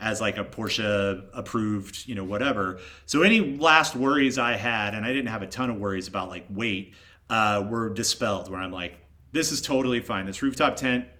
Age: 30-49